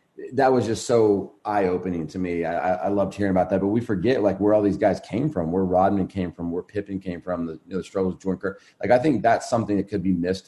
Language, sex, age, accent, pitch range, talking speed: English, male, 30-49, American, 90-105 Hz, 280 wpm